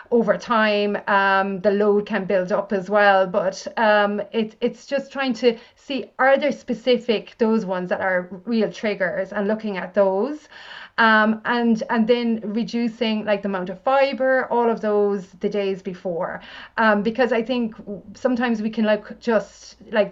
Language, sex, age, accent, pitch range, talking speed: English, female, 30-49, Irish, 200-230 Hz, 165 wpm